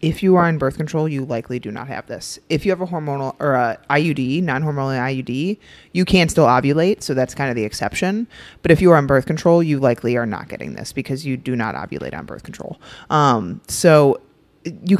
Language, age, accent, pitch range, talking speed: English, 30-49, American, 130-175 Hz, 225 wpm